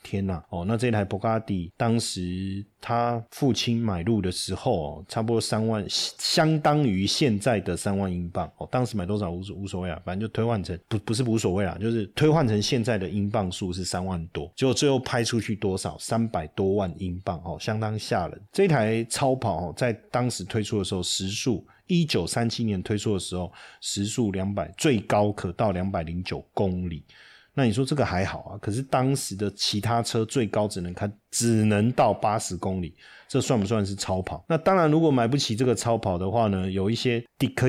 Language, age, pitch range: Chinese, 30-49, 95-120 Hz